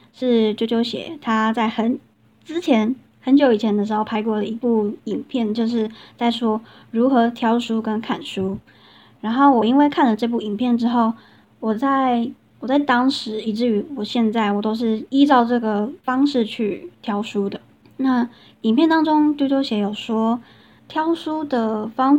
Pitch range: 220-260 Hz